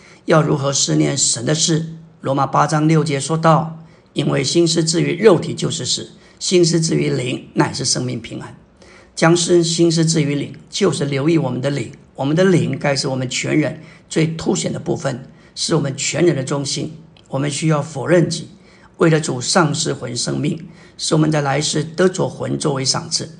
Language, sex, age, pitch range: Chinese, male, 50-69, 140-165 Hz